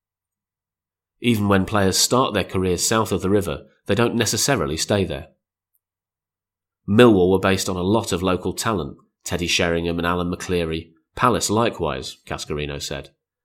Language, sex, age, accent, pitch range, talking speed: English, male, 30-49, British, 85-100 Hz, 145 wpm